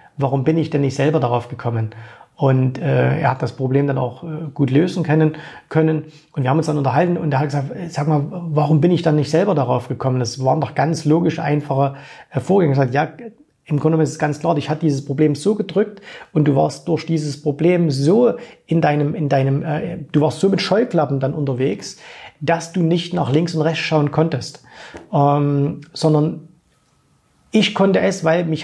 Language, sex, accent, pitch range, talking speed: German, male, German, 140-165 Hz, 210 wpm